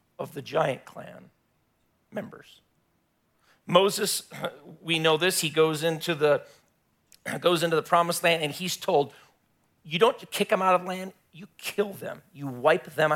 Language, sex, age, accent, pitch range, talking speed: English, male, 40-59, American, 150-180 Hz, 155 wpm